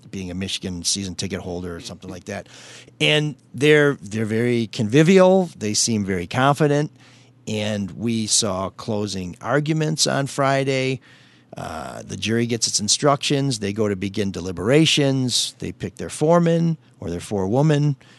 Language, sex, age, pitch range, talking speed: English, male, 50-69, 105-135 Hz, 145 wpm